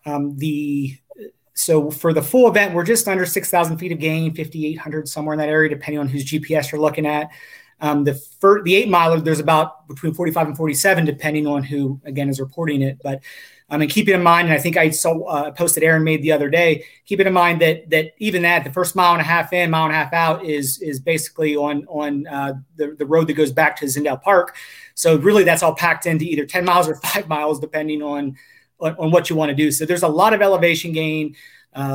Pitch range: 150-175 Hz